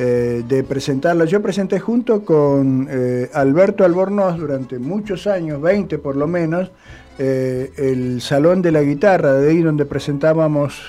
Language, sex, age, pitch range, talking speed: Spanish, male, 50-69, 135-180 Hz, 145 wpm